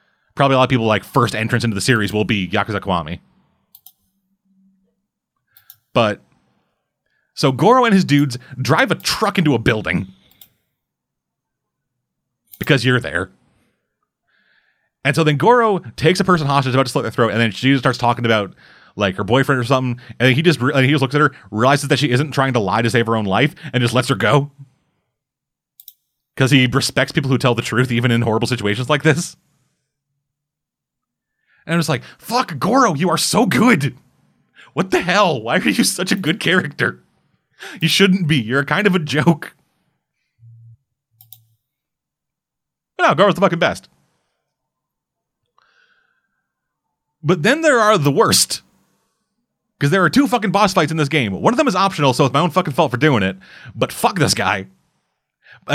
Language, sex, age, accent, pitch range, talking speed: English, male, 30-49, American, 120-170 Hz, 170 wpm